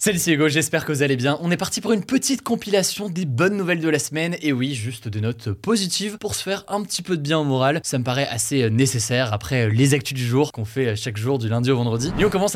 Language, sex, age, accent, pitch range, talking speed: French, male, 20-39, French, 120-165 Hz, 270 wpm